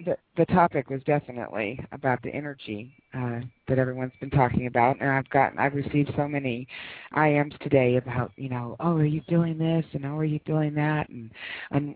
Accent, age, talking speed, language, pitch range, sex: American, 40-59, 195 wpm, English, 125-150 Hz, female